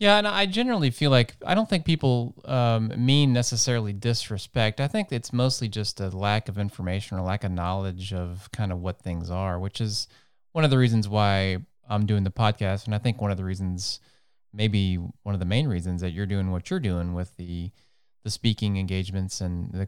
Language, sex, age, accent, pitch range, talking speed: English, male, 20-39, American, 95-120 Hz, 210 wpm